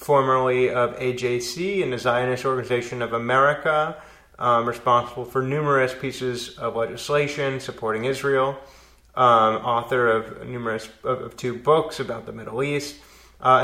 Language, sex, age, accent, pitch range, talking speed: English, male, 30-49, American, 120-150 Hz, 135 wpm